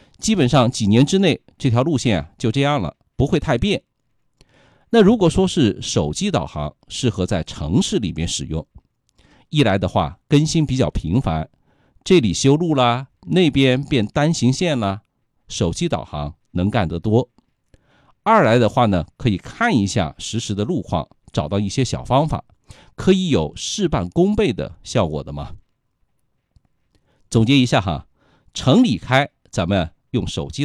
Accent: native